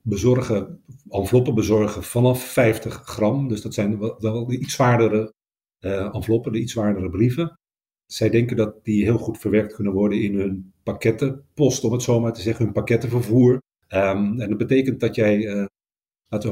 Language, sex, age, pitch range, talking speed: Dutch, male, 50-69, 105-125 Hz, 160 wpm